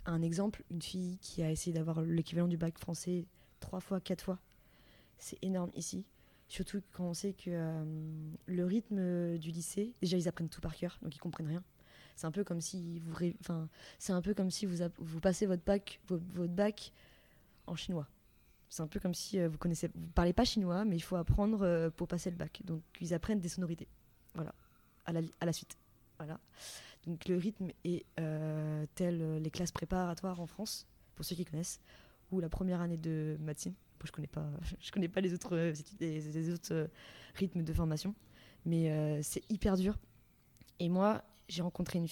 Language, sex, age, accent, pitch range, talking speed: French, female, 20-39, French, 160-185 Hz, 195 wpm